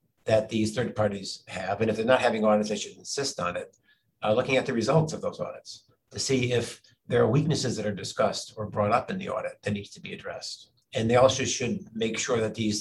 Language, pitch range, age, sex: English, 105-120 Hz, 50-69, male